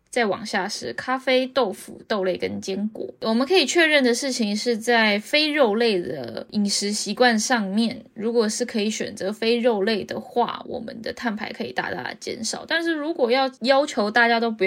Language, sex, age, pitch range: Chinese, female, 10-29, 195-250 Hz